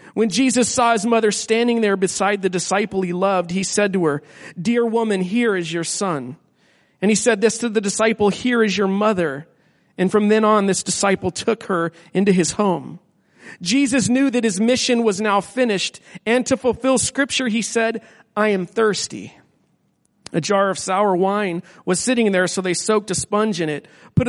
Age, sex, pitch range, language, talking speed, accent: 40-59, male, 185-225 Hz, English, 190 wpm, American